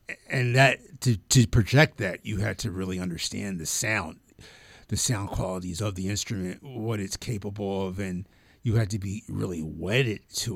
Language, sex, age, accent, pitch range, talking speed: English, male, 50-69, American, 95-120 Hz, 175 wpm